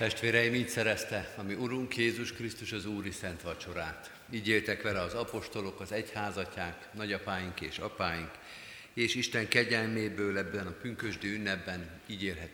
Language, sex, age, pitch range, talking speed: Hungarian, male, 50-69, 95-115 Hz, 140 wpm